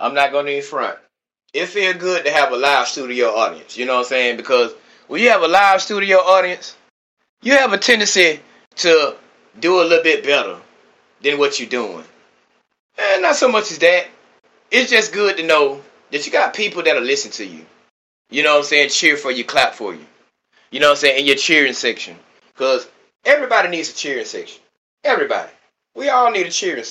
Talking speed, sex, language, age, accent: 210 wpm, male, English, 30-49, American